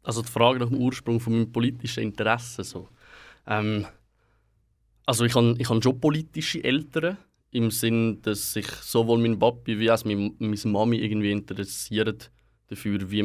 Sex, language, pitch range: male, German, 105-130 Hz